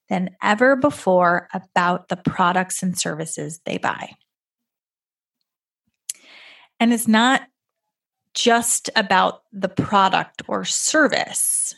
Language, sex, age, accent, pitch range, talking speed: English, female, 30-49, American, 185-230 Hz, 95 wpm